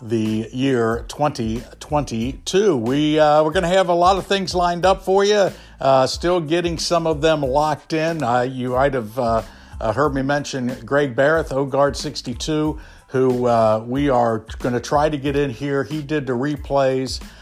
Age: 60-79